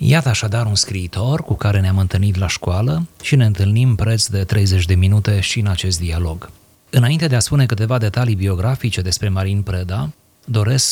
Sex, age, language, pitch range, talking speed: male, 30-49, Romanian, 95-120 Hz, 180 wpm